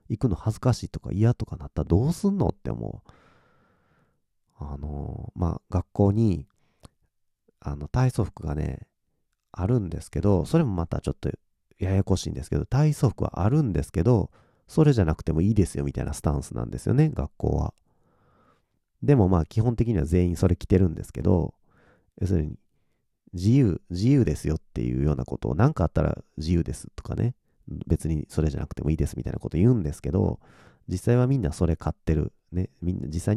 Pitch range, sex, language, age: 80-115 Hz, male, Japanese, 40-59